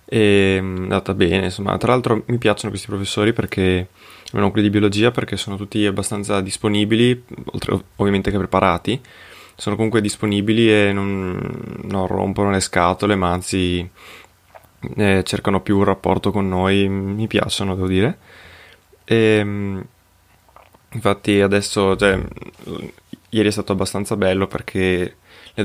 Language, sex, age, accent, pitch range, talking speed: Italian, male, 20-39, native, 95-105 Hz, 130 wpm